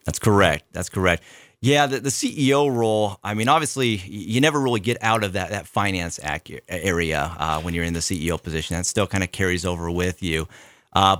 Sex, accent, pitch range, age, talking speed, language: male, American, 85-105 Hz, 30-49, 205 wpm, English